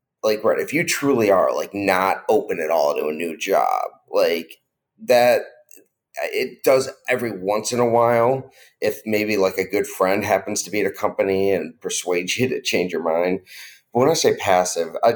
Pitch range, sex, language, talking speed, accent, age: 95-140 Hz, male, English, 195 wpm, American, 30-49